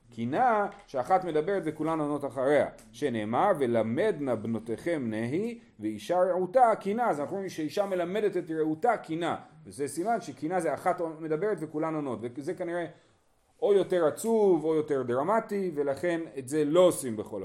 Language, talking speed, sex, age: Hebrew, 150 wpm, male, 40-59